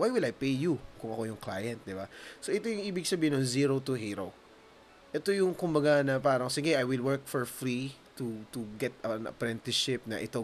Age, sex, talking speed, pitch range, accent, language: 20-39, male, 220 wpm, 105-140 Hz, native, Filipino